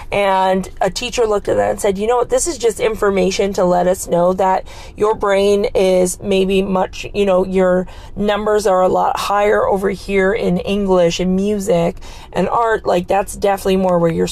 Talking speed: 195 wpm